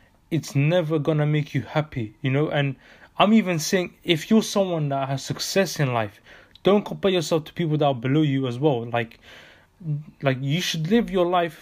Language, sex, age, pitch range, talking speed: English, male, 20-39, 135-155 Hz, 200 wpm